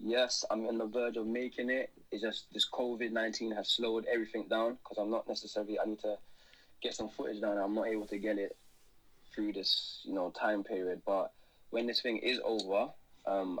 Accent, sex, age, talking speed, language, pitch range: British, male, 20-39, 205 wpm, English, 105-120 Hz